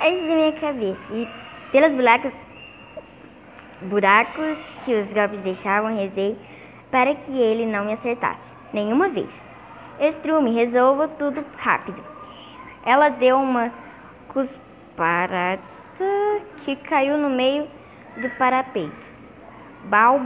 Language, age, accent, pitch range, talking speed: Portuguese, 10-29, Brazilian, 220-290 Hz, 105 wpm